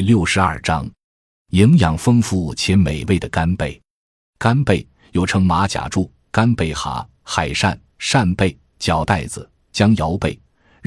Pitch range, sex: 80-105 Hz, male